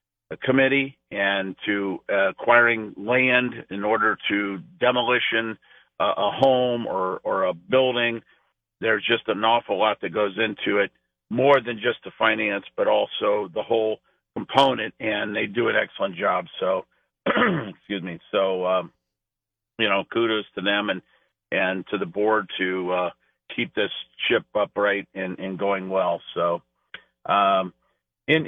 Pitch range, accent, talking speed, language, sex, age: 100-125 Hz, American, 150 wpm, English, male, 50-69